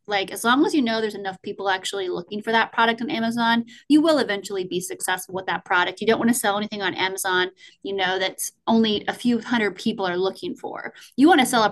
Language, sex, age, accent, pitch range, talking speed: English, female, 20-39, American, 195-230 Hz, 245 wpm